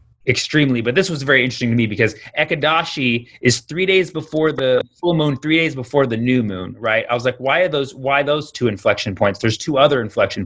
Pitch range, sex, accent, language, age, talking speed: 115-150 Hz, male, American, English, 30-49, 225 wpm